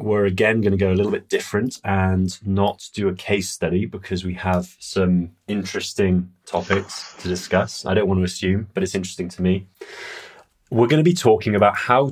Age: 20-39